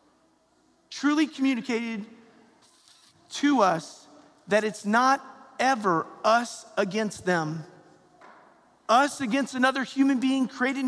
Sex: male